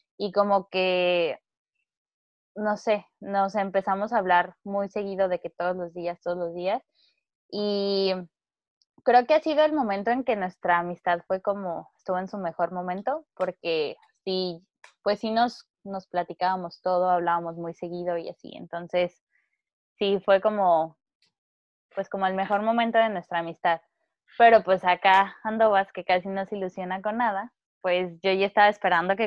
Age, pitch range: 10-29, 175-215 Hz